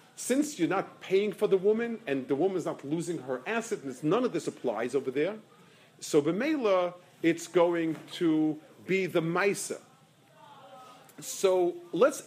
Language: English